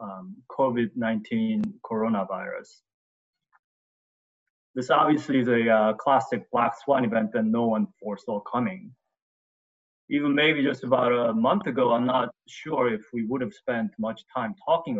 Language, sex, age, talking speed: English, male, 20-39, 140 wpm